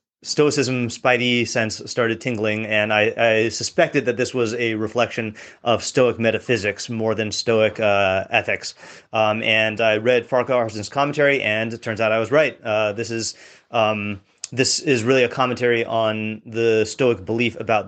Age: 30-49